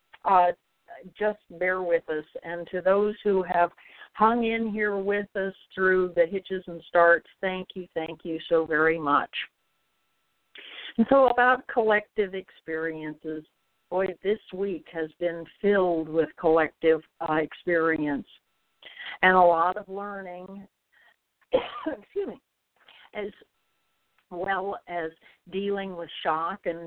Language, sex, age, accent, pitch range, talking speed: English, female, 60-79, American, 170-210 Hz, 125 wpm